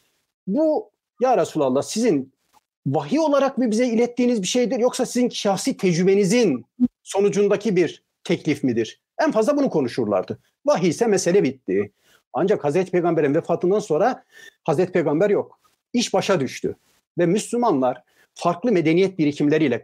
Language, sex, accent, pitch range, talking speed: Turkish, male, native, 165-230 Hz, 130 wpm